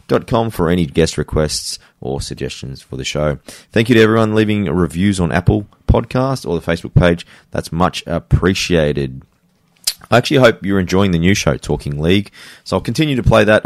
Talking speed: 180 wpm